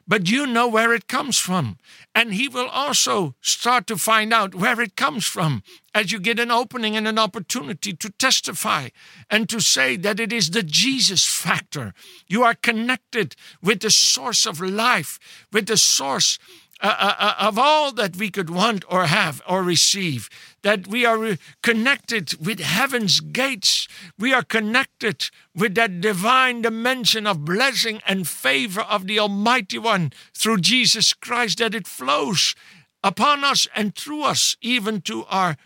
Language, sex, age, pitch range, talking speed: English, male, 60-79, 180-230 Hz, 165 wpm